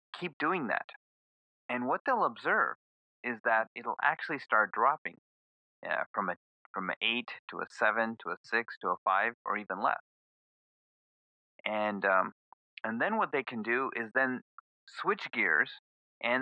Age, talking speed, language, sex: 30-49, 160 wpm, English, male